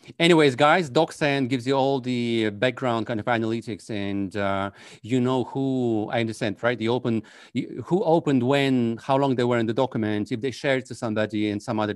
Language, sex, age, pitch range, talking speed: English, male, 40-59, 110-135 Hz, 200 wpm